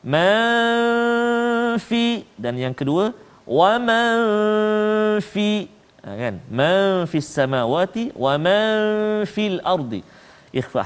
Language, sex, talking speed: Malayalam, male, 85 wpm